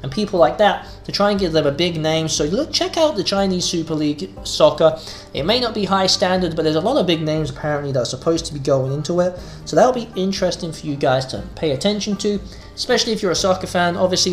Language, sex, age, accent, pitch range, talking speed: English, male, 20-39, British, 155-200 Hz, 255 wpm